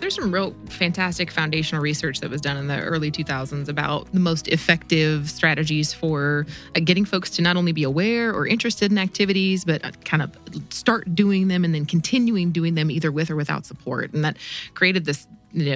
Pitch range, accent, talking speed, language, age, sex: 155-185 Hz, American, 195 wpm, English, 20-39, female